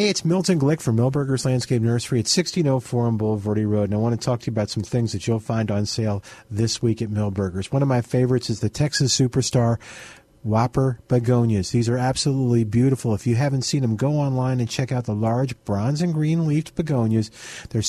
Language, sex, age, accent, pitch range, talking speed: English, male, 50-69, American, 115-155 Hz, 215 wpm